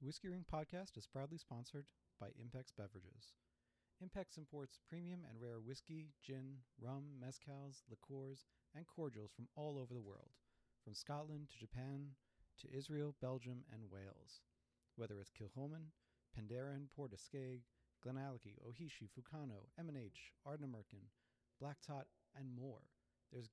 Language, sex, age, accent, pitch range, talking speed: English, male, 40-59, American, 115-145 Hz, 130 wpm